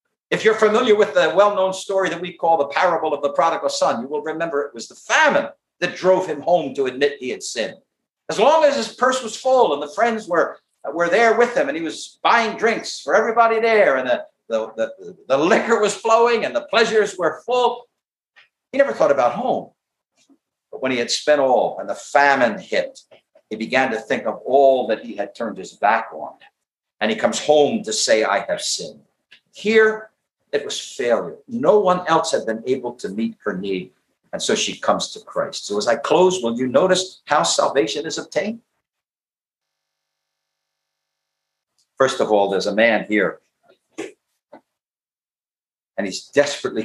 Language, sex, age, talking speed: English, male, 50-69, 185 wpm